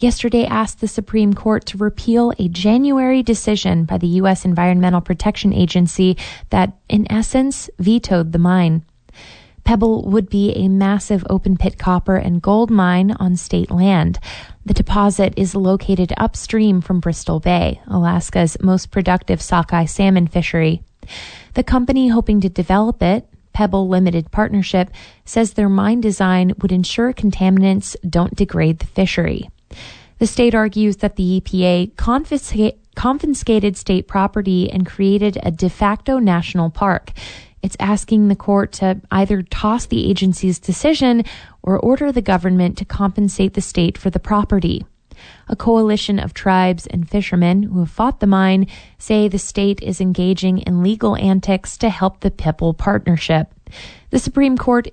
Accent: American